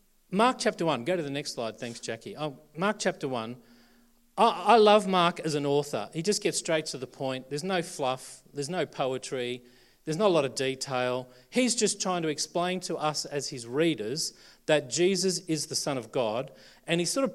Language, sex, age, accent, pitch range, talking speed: English, male, 40-59, Australian, 145-190 Hz, 210 wpm